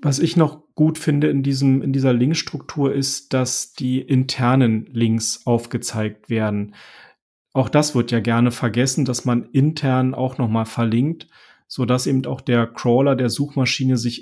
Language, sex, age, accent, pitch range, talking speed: German, male, 40-59, German, 120-135 Hz, 155 wpm